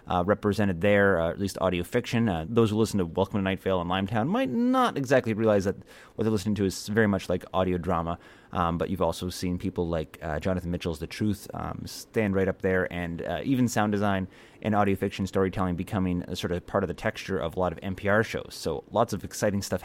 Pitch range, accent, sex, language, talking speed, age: 90-110 Hz, American, male, English, 235 wpm, 30-49